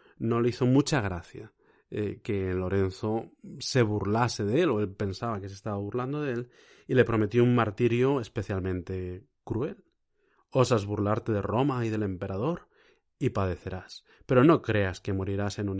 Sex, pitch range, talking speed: male, 105-130 Hz, 165 wpm